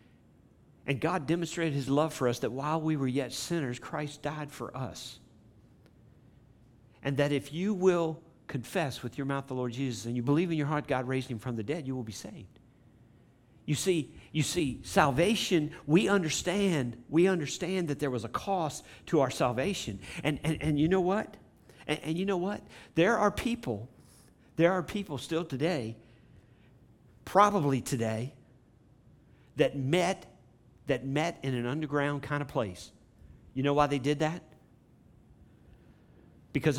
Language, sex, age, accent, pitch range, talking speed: English, male, 50-69, American, 120-155 Hz, 165 wpm